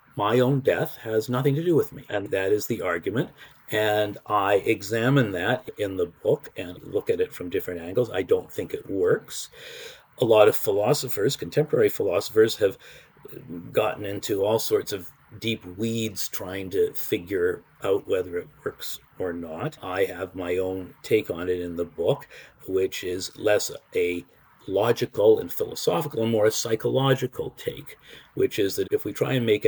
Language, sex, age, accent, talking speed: English, male, 50-69, American, 175 wpm